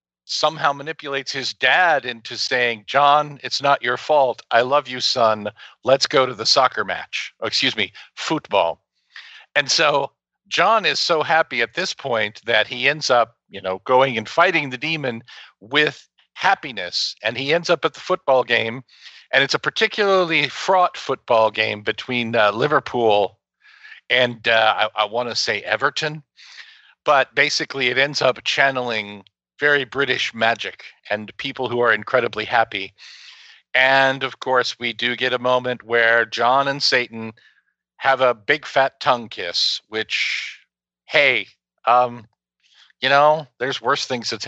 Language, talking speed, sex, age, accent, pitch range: English, 155 wpm, male, 50-69, American, 115-145 Hz